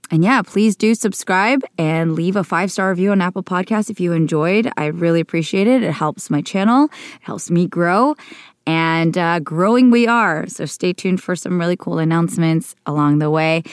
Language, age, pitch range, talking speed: English, 20-39, 160-200 Hz, 190 wpm